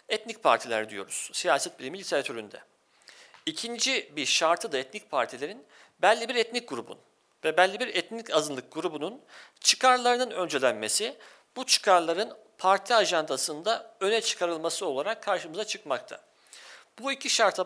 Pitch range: 160-235 Hz